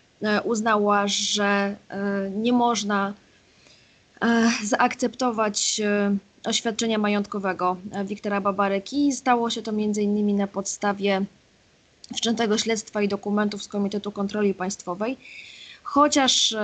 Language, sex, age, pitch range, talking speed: Polish, female, 20-39, 200-235 Hz, 90 wpm